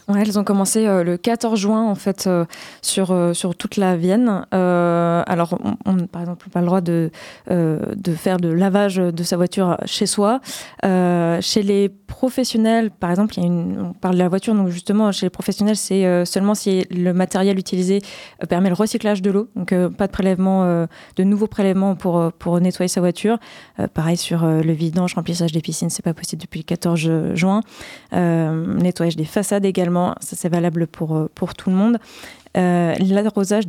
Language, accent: French, French